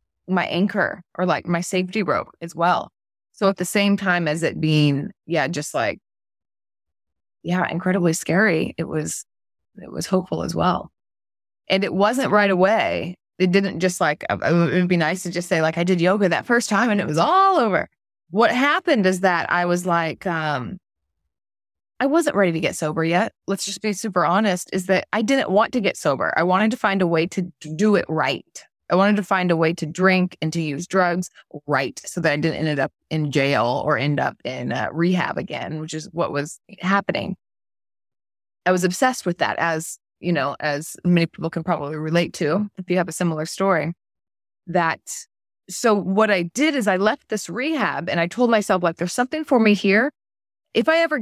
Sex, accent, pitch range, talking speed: female, American, 160-200 Hz, 205 wpm